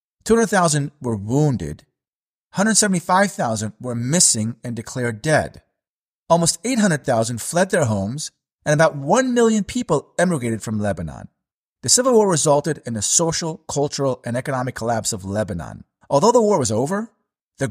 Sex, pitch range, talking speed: male, 115-180 Hz, 140 wpm